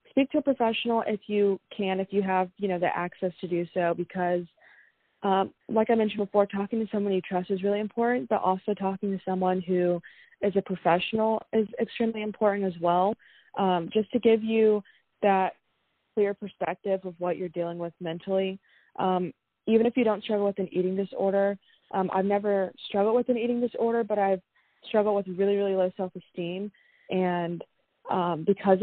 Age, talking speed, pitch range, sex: 20-39, 185 wpm, 185-210 Hz, female